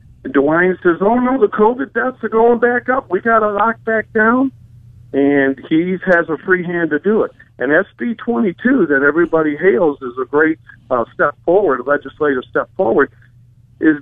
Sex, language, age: male, English, 50-69